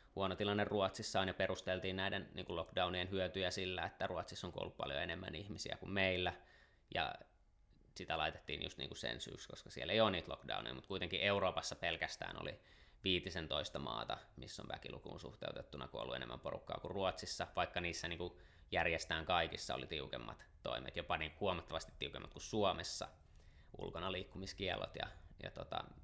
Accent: native